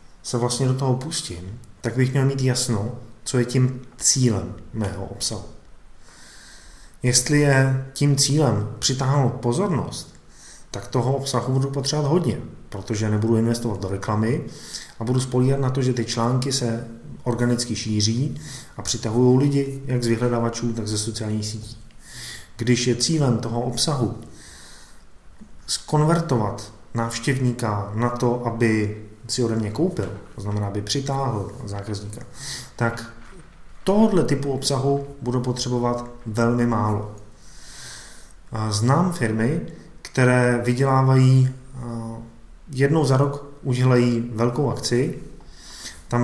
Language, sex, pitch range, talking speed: Czech, male, 110-130 Hz, 120 wpm